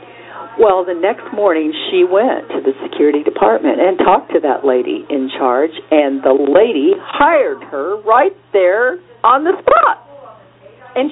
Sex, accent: female, American